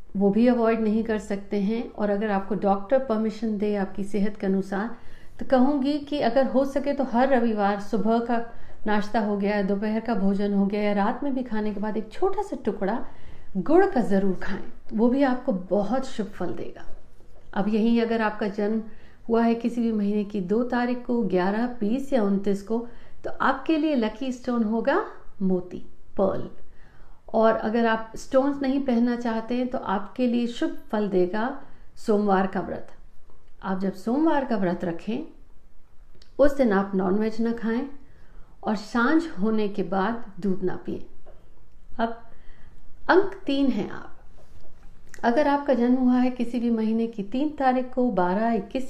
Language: Hindi